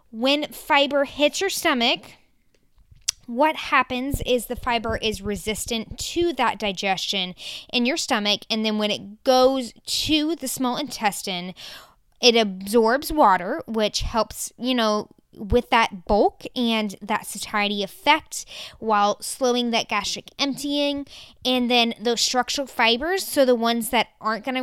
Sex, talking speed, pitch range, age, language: female, 140 wpm, 215-265 Hz, 20-39, English